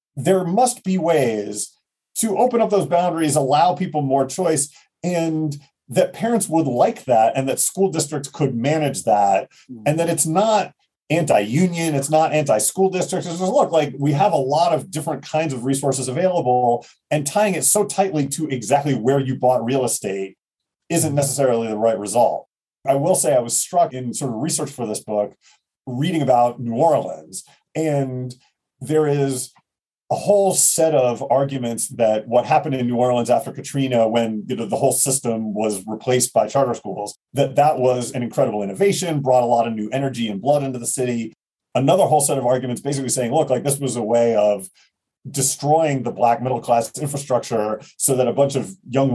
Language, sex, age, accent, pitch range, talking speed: English, male, 40-59, American, 120-160 Hz, 185 wpm